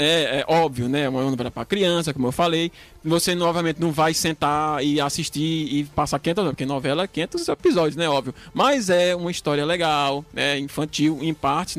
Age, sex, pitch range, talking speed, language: 20-39, male, 145-185 Hz, 190 wpm, Portuguese